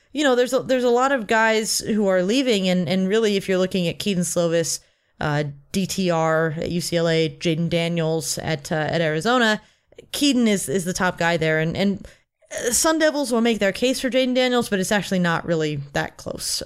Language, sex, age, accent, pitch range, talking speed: English, female, 30-49, American, 175-245 Hz, 200 wpm